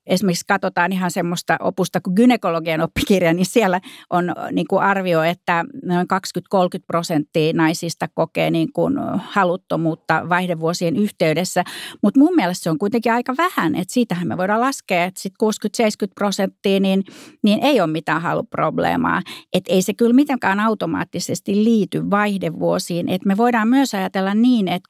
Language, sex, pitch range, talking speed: Finnish, female, 180-235 Hz, 150 wpm